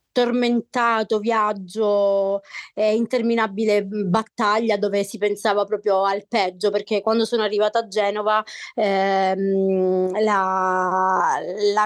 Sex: female